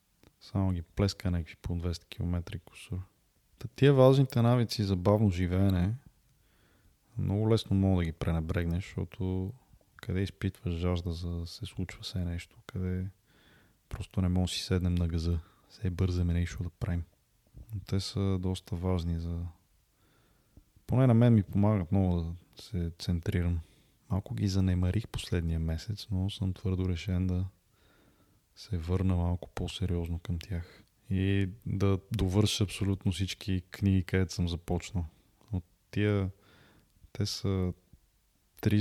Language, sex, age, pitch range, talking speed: Bulgarian, male, 20-39, 90-105 Hz, 135 wpm